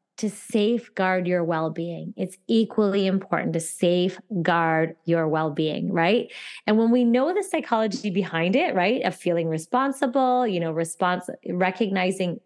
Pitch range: 170-215 Hz